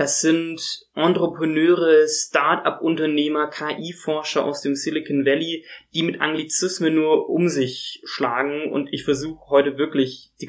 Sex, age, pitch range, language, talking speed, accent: male, 20-39, 135-165 Hz, German, 125 wpm, German